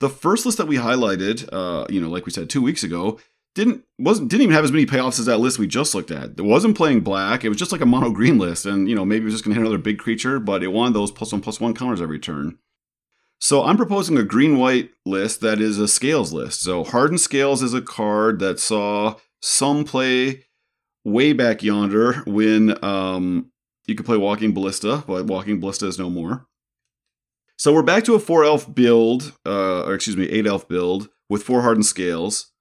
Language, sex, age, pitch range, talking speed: English, male, 30-49, 95-125 Hz, 225 wpm